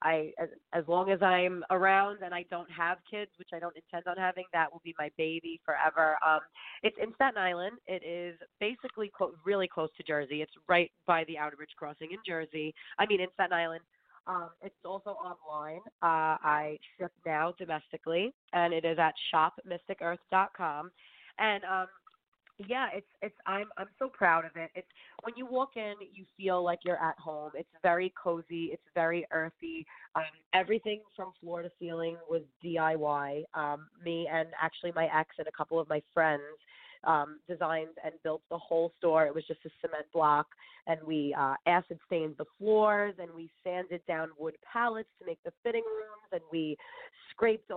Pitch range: 160-195 Hz